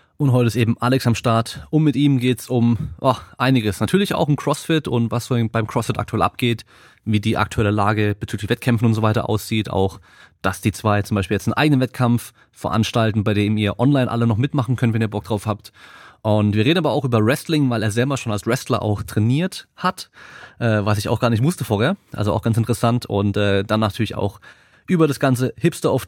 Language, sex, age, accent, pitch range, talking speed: German, male, 30-49, German, 105-125 Hz, 225 wpm